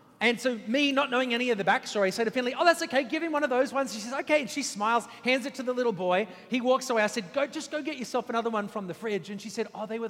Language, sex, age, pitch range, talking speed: English, male, 30-49, 210-265 Hz, 320 wpm